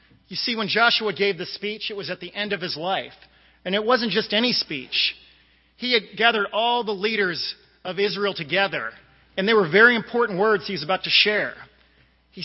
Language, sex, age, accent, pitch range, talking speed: English, male, 40-59, American, 175-215 Hz, 200 wpm